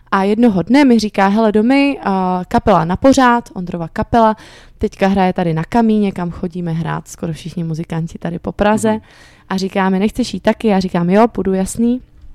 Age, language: 20-39, Czech